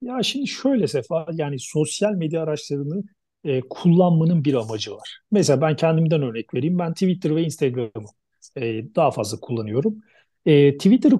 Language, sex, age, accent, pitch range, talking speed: Turkish, male, 40-59, native, 140-195 Hz, 150 wpm